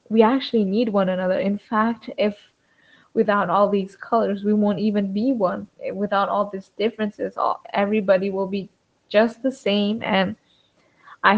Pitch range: 185-210 Hz